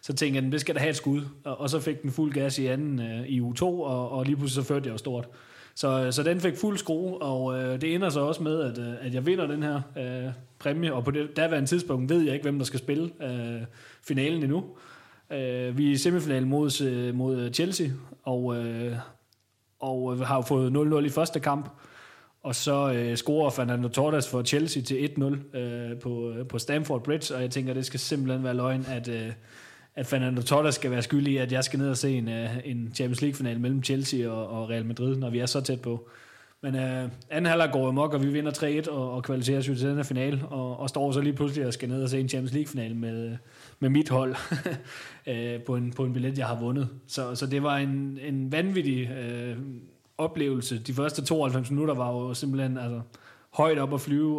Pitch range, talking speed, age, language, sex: 125-145 Hz, 230 wpm, 30-49, Danish, male